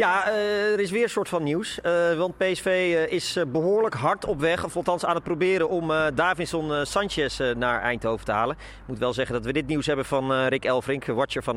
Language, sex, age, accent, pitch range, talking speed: Dutch, male, 30-49, Dutch, 125-180 Hz, 215 wpm